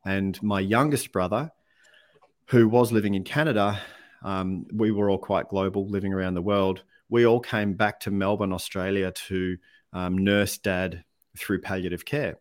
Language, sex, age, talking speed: English, male, 40-59, 160 wpm